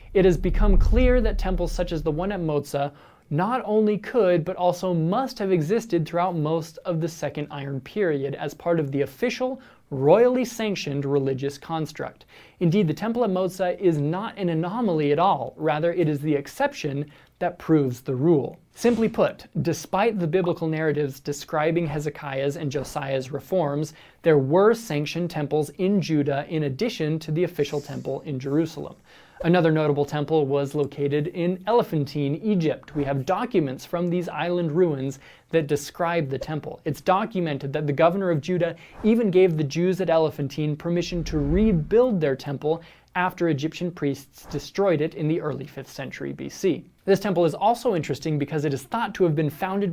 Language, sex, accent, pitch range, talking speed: English, male, American, 145-185 Hz, 170 wpm